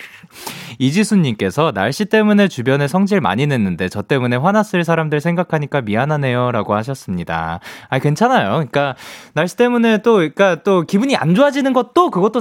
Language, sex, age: Korean, male, 20-39